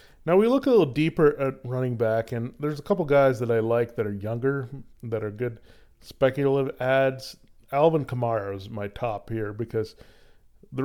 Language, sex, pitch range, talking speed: English, male, 115-135 Hz, 185 wpm